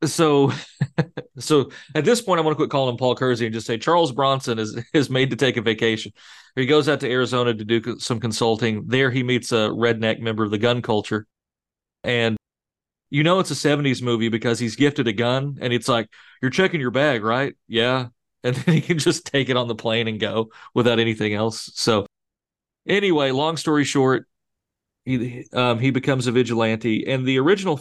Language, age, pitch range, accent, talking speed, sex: English, 40-59, 115-135 Hz, American, 205 wpm, male